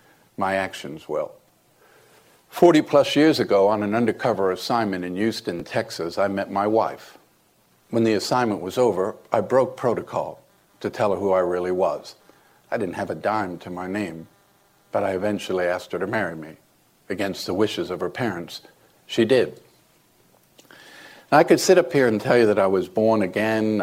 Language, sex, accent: English, male, American